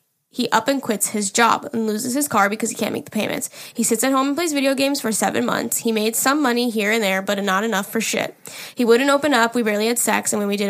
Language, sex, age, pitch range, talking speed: English, female, 10-29, 215-240 Hz, 285 wpm